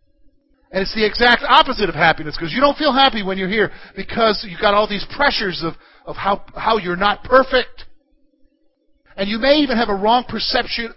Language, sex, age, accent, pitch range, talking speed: English, male, 50-69, American, 195-280 Hz, 195 wpm